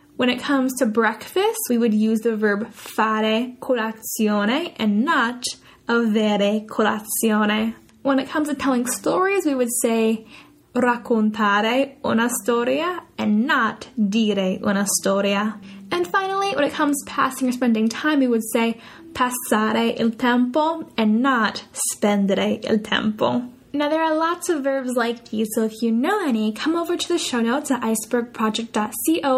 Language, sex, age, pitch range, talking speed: Italian, female, 10-29, 220-270 Hz, 155 wpm